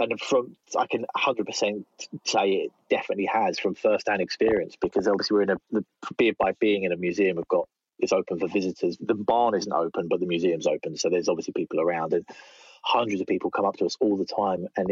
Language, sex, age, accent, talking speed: English, male, 30-49, British, 215 wpm